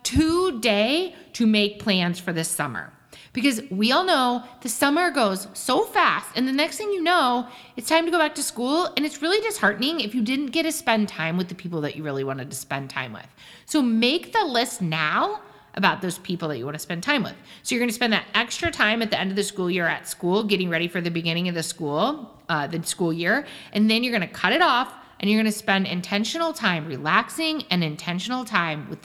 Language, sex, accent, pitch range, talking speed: English, female, American, 170-265 Hz, 240 wpm